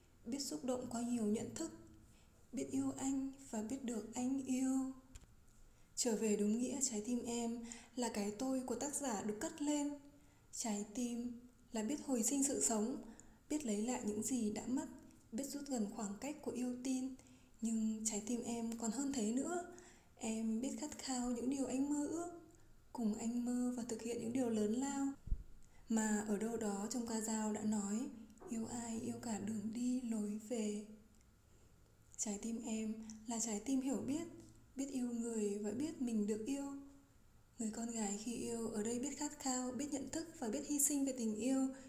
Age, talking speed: 20-39, 190 wpm